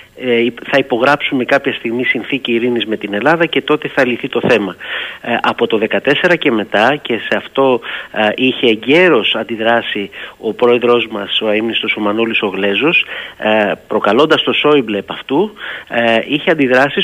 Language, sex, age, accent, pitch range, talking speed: Greek, male, 30-49, native, 115-150 Hz, 160 wpm